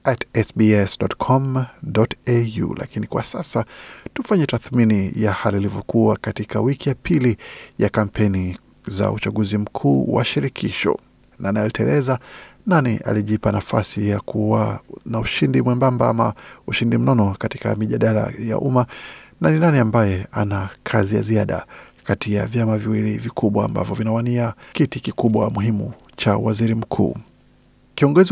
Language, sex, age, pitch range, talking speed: Swahili, male, 50-69, 105-125 Hz, 125 wpm